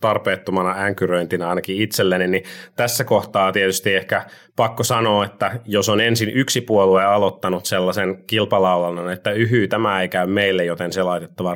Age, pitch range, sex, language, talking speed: 30-49, 95-115 Hz, male, Finnish, 150 wpm